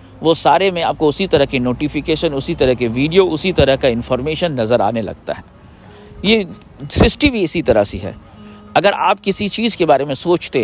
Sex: male